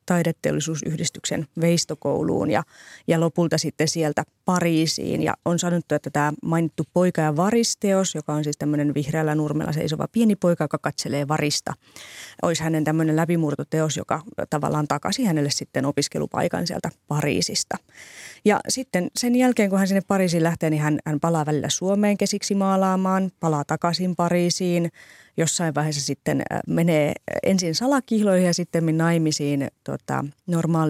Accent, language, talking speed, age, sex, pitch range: native, Finnish, 140 wpm, 30-49, female, 150-180 Hz